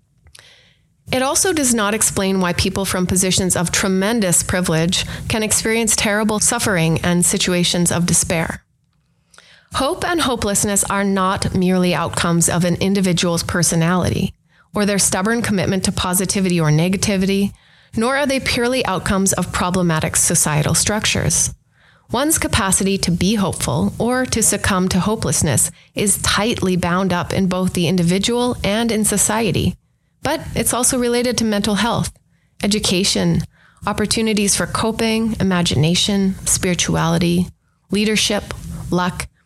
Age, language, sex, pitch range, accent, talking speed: 30-49, English, female, 180-220 Hz, American, 130 wpm